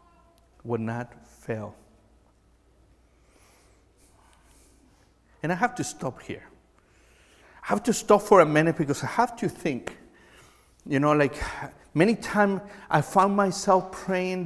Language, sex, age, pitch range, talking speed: English, male, 50-69, 110-145 Hz, 125 wpm